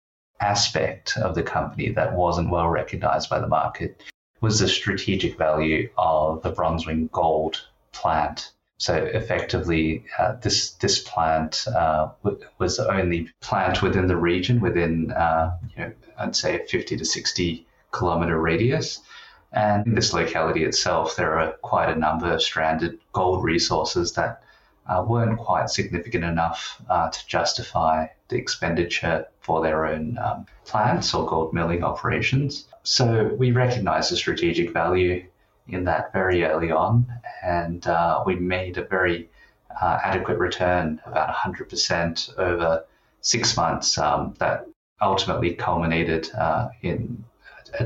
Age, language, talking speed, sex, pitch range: 30-49, English, 140 wpm, male, 80-95 Hz